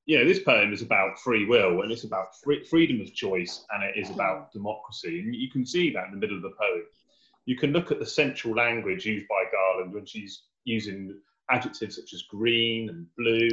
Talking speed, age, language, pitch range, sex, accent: 215 wpm, 30-49, English, 105-145 Hz, male, British